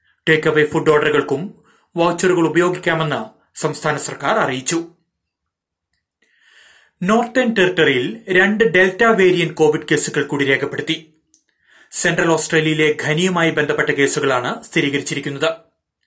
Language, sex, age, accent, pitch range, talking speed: Malayalam, male, 30-49, native, 150-180 Hz, 85 wpm